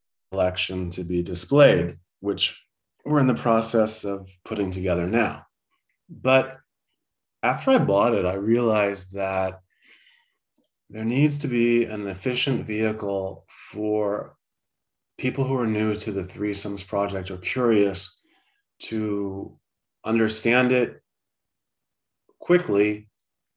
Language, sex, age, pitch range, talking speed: English, male, 30-49, 100-125 Hz, 110 wpm